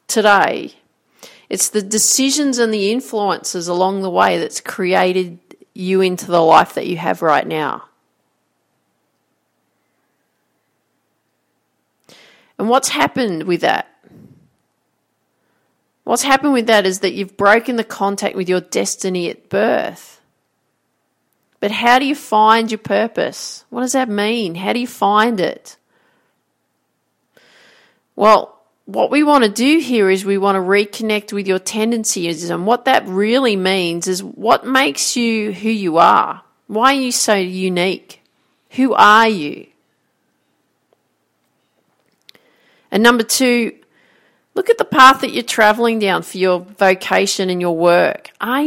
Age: 40-59